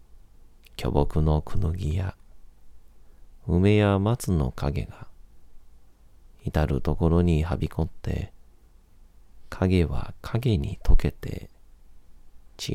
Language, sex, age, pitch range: Japanese, male, 40-59, 75-90 Hz